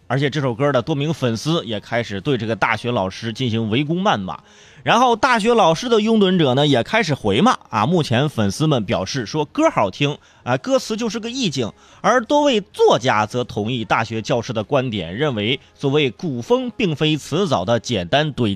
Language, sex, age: Chinese, male, 30-49